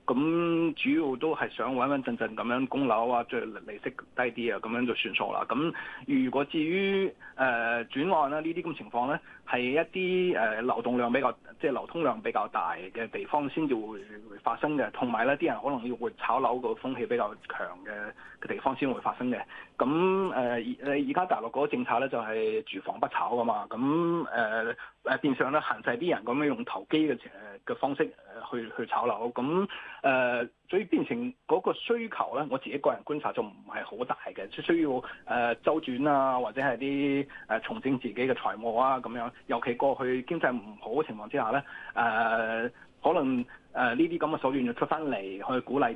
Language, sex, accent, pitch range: Chinese, male, native, 125-185 Hz